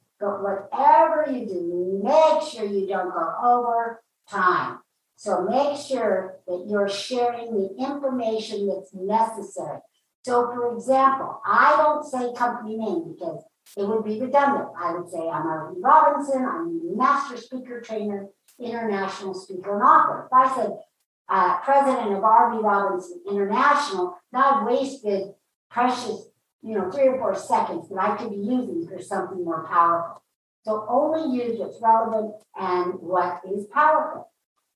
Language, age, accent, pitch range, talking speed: English, 60-79, American, 195-270 Hz, 145 wpm